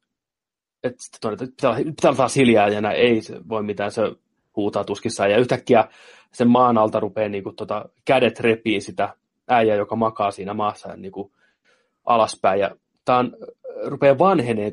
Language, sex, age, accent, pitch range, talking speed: Finnish, male, 30-49, native, 105-120 Hz, 155 wpm